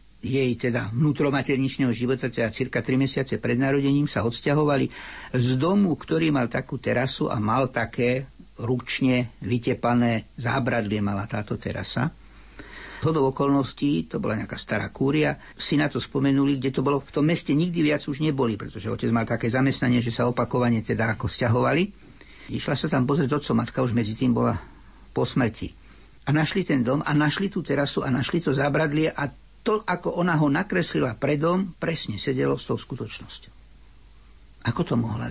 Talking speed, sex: 170 wpm, male